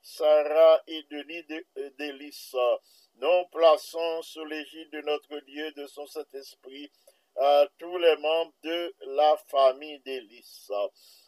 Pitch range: 145-165 Hz